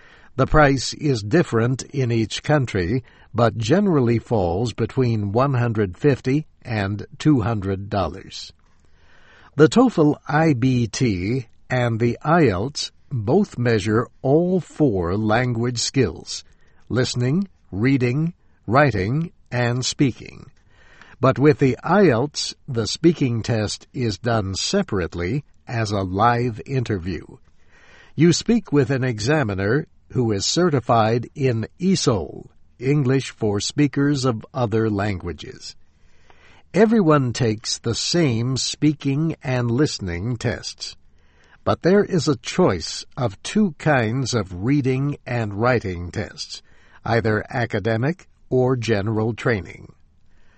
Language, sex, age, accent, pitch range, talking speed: English, male, 60-79, American, 105-145 Hz, 100 wpm